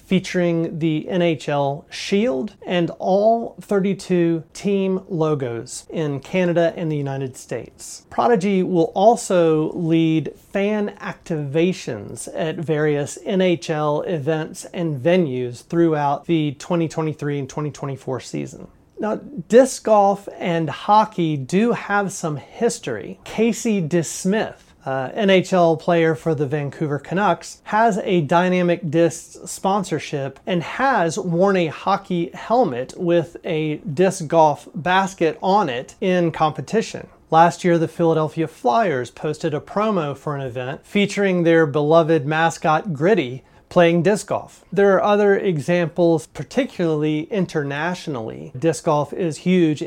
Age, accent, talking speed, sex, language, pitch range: 30-49, American, 120 wpm, male, English, 150-185 Hz